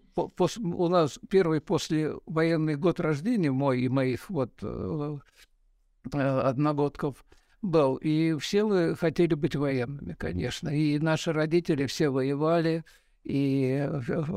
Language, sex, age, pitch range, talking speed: Russian, male, 60-79, 140-180 Hz, 105 wpm